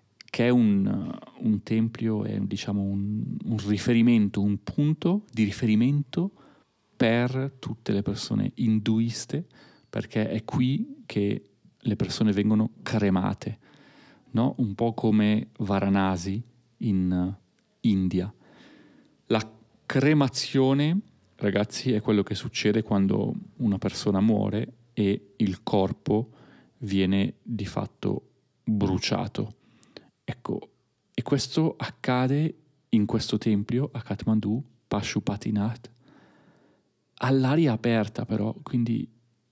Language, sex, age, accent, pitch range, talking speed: Italian, male, 30-49, native, 105-125 Hz, 100 wpm